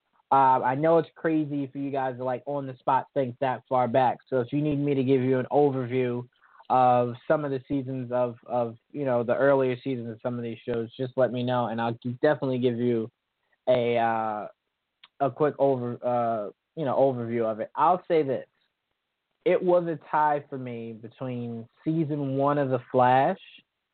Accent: American